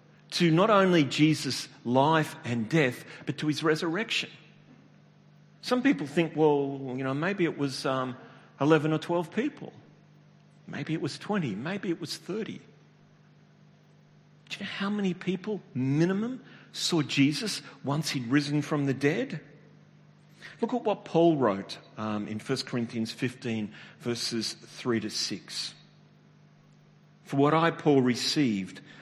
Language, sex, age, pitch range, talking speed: English, male, 40-59, 125-165 Hz, 140 wpm